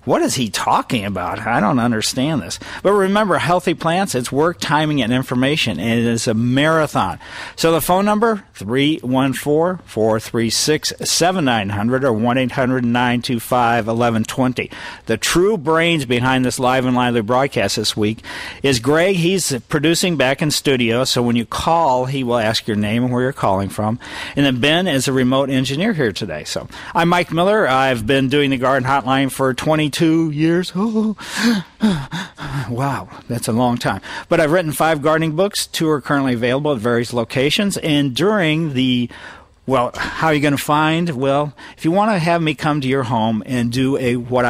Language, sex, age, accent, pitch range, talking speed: English, male, 50-69, American, 125-160 Hz, 175 wpm